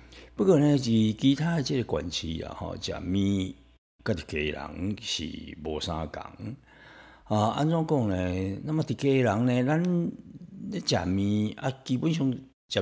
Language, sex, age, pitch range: Chinese, male, 60-79, 80-125 Hz